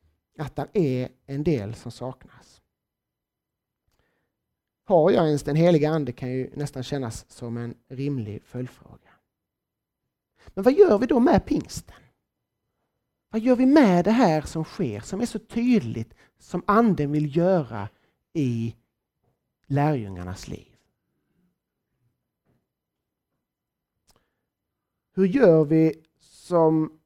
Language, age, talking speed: Swedish, 30-49, 115 wpm